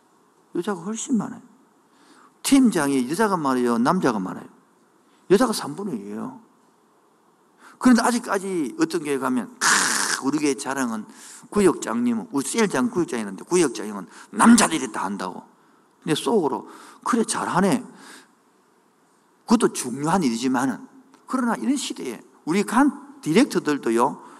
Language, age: Korean, 50-69